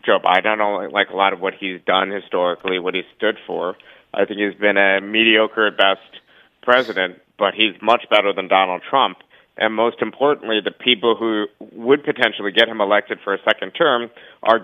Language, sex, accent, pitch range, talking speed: English, male, American, 100-115 Hz, 200 wpm